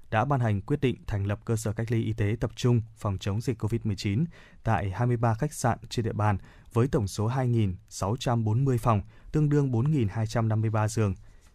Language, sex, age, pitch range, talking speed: Vietnamese, male, 20-39, 105-125 Hz, 180 wpm